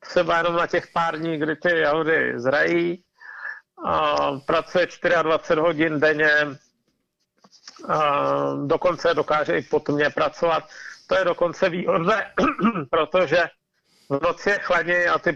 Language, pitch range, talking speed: Czech, 150-185 Hz, 115 wpm